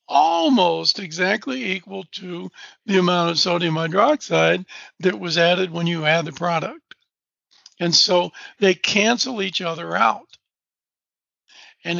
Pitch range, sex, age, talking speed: 175-220 Hz, male, 60-79, 125 wpm